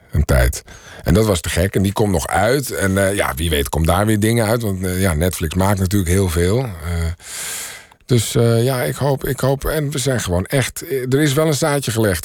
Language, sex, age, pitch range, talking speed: Dutch, male, 50-69, 95-120 Hz, 240 wpm